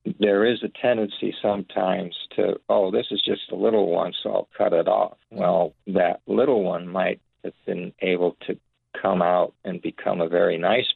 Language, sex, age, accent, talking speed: English, male, 50-69, American, 185 wpm